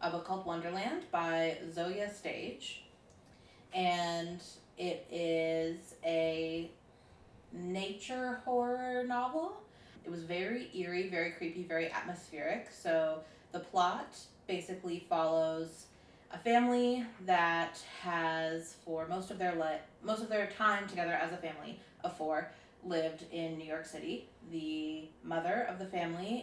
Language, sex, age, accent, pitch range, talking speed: English, female, 20-39, American, 165-205 Hz, 125 wpm